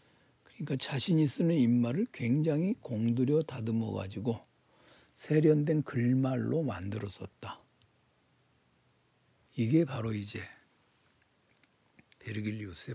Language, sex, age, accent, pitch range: Korean, male, 60-79, native, 115-145 Hz